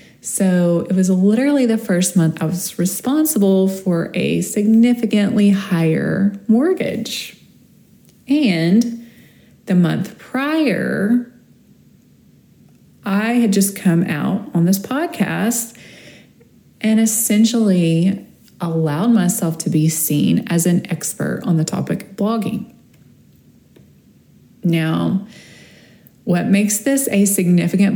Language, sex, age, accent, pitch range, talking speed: English, female, 30-49, American, 170-220 Hz, 105 wpm